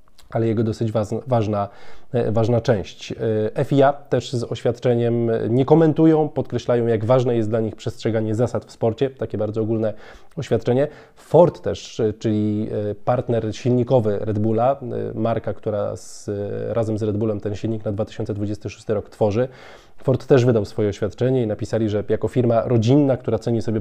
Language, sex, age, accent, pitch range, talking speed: Polish, male, 20-39, native, 110-125 Hz, 150 wpm